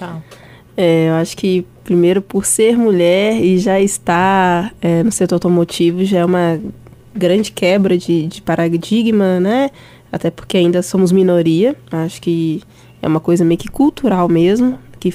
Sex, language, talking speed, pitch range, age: female, Portuguese, 155 wpm, 175-215 Hz, 20-39